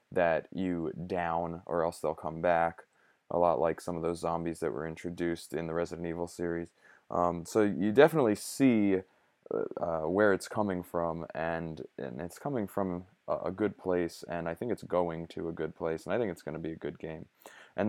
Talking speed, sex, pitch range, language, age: 210 wpm, male, 85-105 Hz, English, 20-39